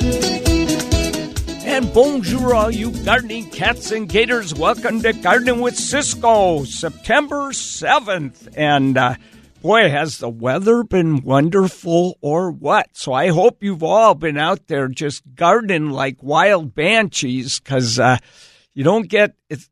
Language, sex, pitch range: English, male, 130-195 Hz